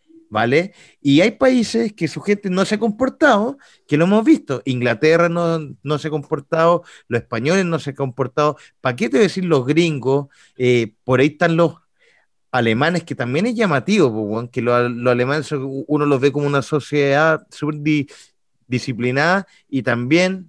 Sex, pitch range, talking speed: male, 130-195 Hz, 175 wpm